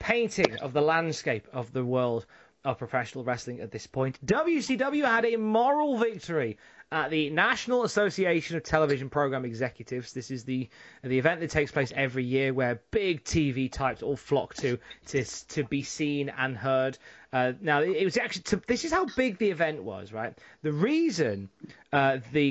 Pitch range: 130-185 Hz